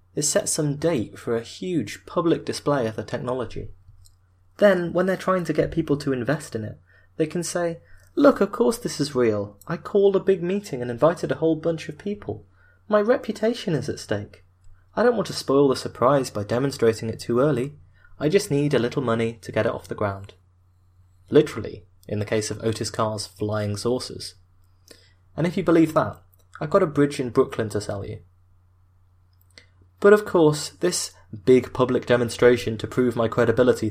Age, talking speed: 20-39, 190 wpm